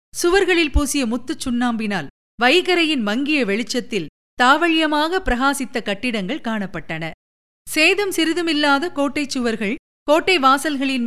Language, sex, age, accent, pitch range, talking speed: Tamil, female, 50-69, native, 215-305 Hz, 90 wpm